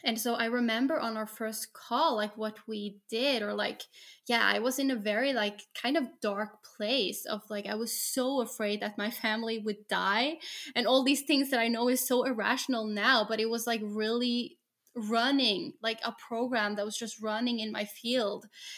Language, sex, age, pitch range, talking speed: English, female, 10-29, 215-250 Hz, 200 wpm